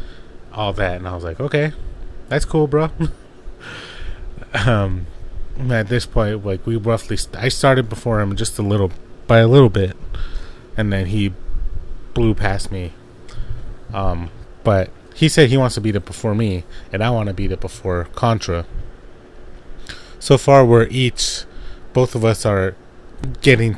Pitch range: 95-120 Hz